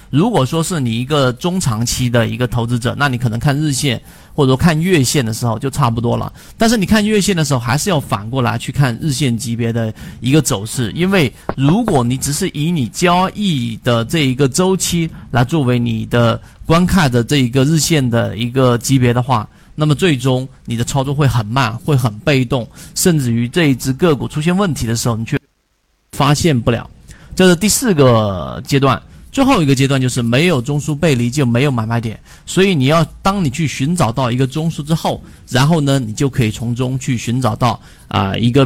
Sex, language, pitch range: male, Chinese, 120-155 Hz